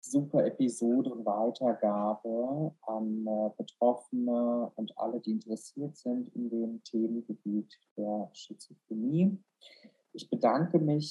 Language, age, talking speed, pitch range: German, 50-69, 95 wpm, 115-145 Hz